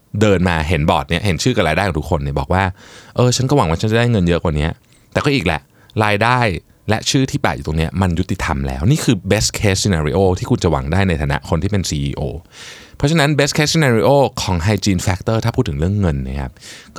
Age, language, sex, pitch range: 20-39, Thai, male, 85-120 Hz